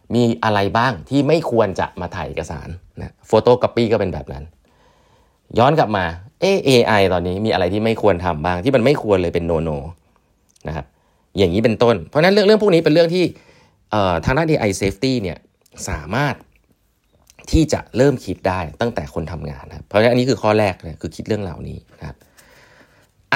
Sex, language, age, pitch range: male, Thai, 30-49, 85-120 Hz